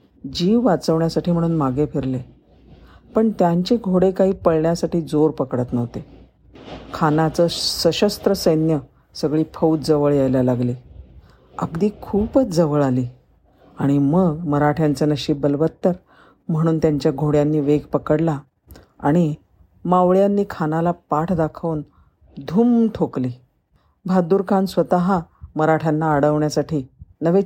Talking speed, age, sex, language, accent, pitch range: 105 wpm, 50-69, female, Marathi, native, 140-170 Hz